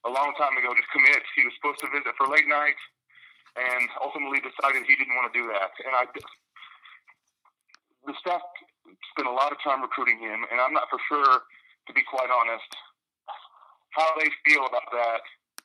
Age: 30-49